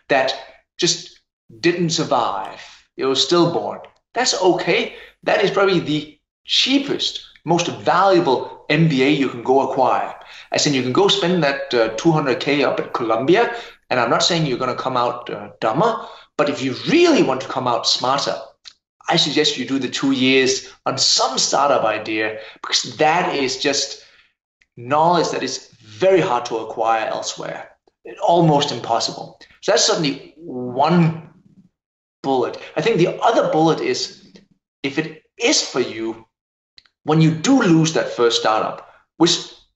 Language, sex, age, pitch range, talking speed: English, male, 30-49, 130-190 Hz, 155 wpm